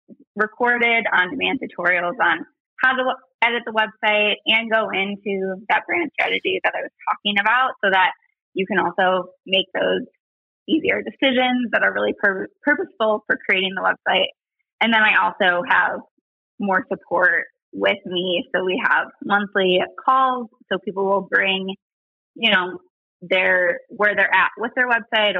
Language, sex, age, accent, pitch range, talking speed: English, female, 20-39, American, 190-260 Hz, 155 wpm